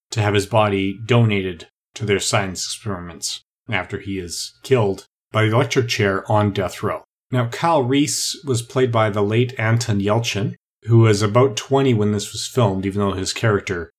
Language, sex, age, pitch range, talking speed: English, male, 30-49, 100-130 Hz, 180 wpm